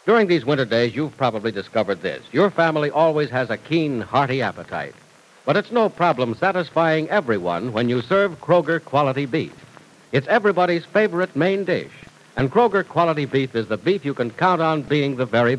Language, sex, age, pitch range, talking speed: English, male, 60-79, 120-175 Hz, 175 wpm